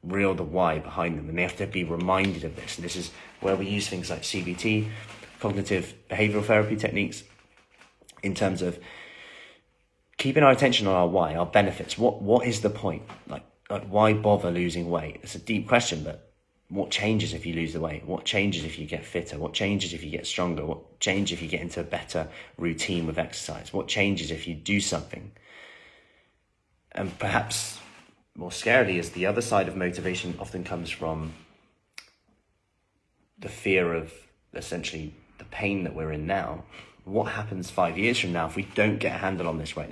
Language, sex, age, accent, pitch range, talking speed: English, male, 30-49, British, 85-100 Hz, 190 wpm